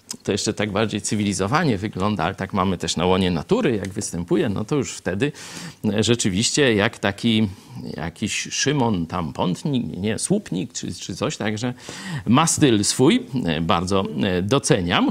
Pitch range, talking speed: 105-135 Hz, 145 wpm